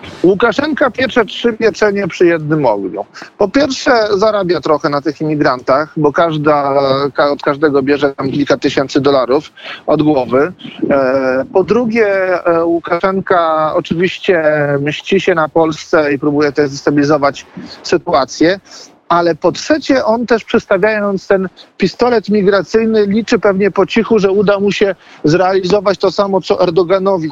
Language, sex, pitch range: Polish, male, 155-205 Hz